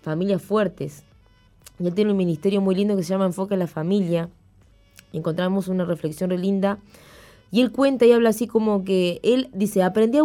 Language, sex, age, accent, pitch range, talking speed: Spanish, female, 20-39, Argentinian, 170-215 Hz, 195 wpm